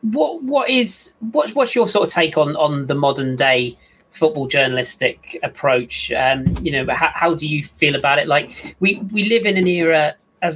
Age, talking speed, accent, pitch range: 30-49, 200 wpm, British, 125-170 Hz